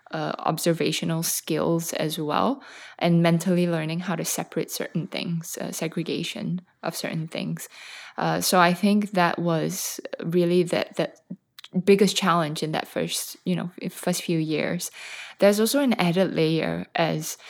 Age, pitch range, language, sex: 20-39, 160-190 Hz, English, female